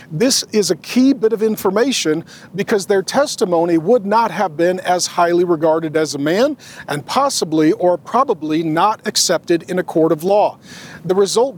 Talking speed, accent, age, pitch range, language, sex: 170 wpm, American, 40-59, 170-225 Hz, English, male